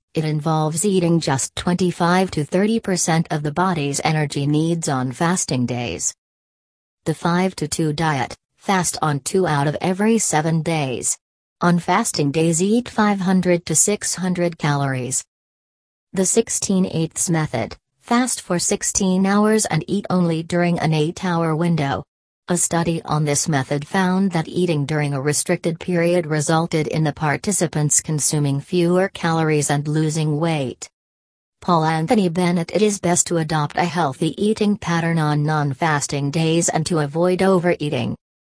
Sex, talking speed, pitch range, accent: female, 145 wpm, 145-180 Hz, American